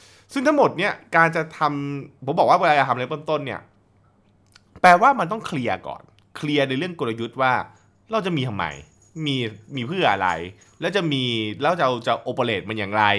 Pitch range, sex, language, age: 110-160 Hz, male, Thai, 20-39